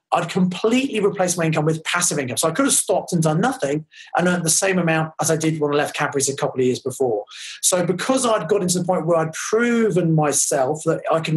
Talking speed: 250 wpm